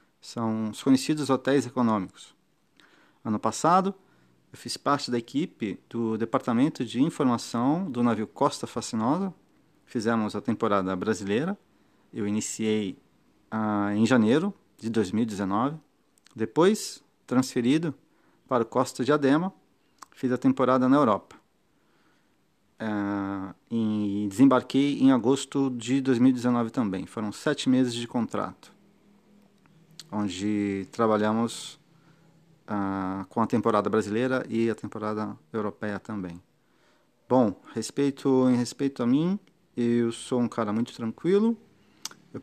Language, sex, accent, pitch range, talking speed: French, male, Brazilian, 105-140 Hz, 115 wpm